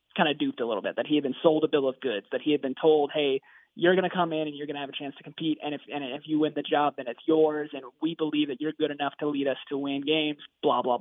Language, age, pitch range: English, 20-39, 155-190 Hz